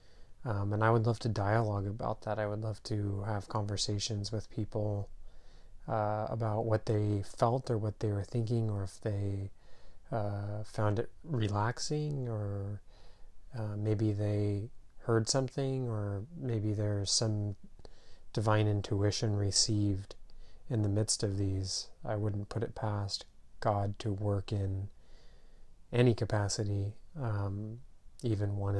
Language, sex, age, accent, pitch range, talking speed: English, male, 30-49, American, 100-115 Hz, 140 wpm